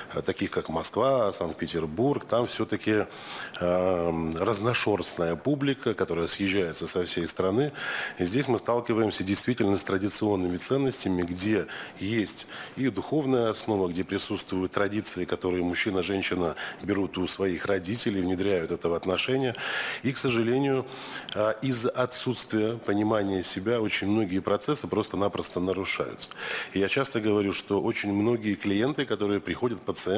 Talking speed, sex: 120 wpm, male